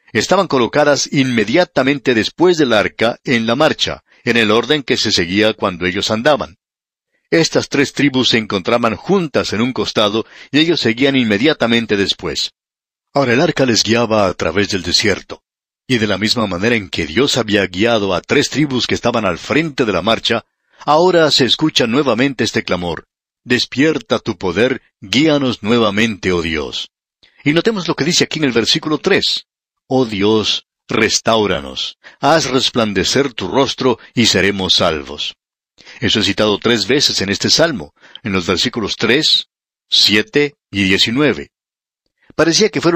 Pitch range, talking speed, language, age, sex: 100-145 Hz, 155 wpm, Spanish, 50-69, male